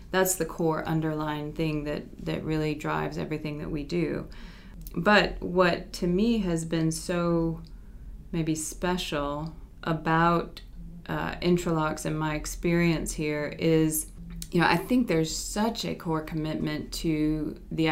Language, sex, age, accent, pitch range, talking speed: English, female, 20-39, American, 155-180 Hz, 135 wpm